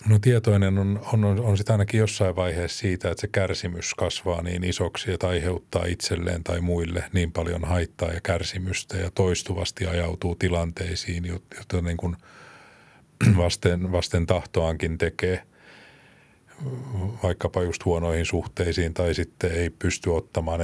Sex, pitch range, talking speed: male, 85-95 Hz, 130 wpm